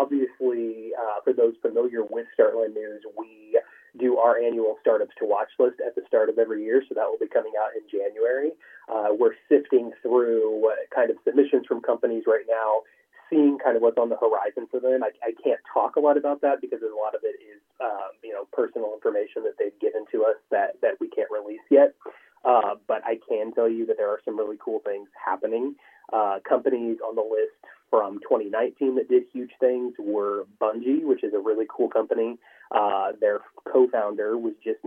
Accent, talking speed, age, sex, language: American, 205 wpm, 30-49, male, English